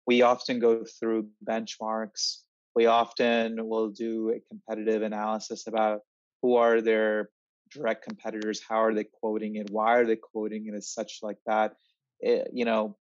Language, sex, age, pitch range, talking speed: English, male, 30-49, 110-125 Hz, 160 wpm